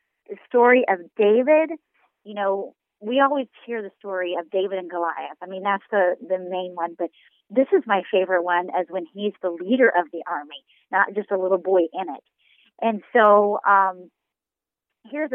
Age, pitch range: 40-59, 185-225 Hz